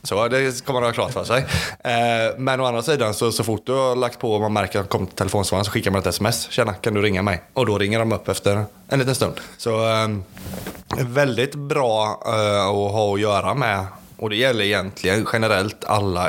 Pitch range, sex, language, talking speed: 100-125 Hz, male, Swedish, 225 wpm